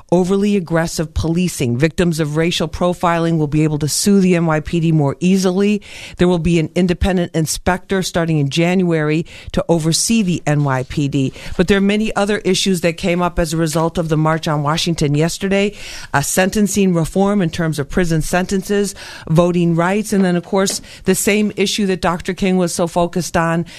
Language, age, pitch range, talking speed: English, 50-69, 160-195 Hz, 180 wpm